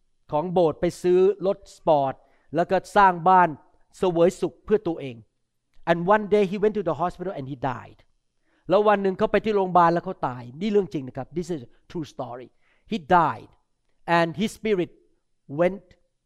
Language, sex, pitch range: Thai, male, 150-205 Hz